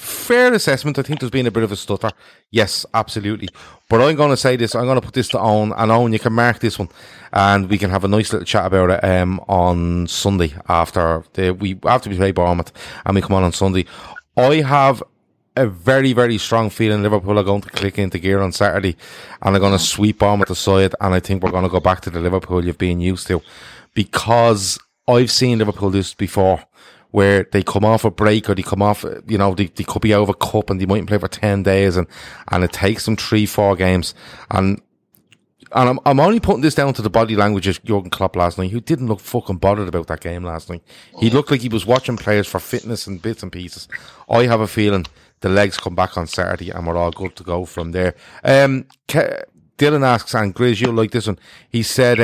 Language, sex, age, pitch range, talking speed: English, male, 30-49, 95-115 Hz, 235 wpm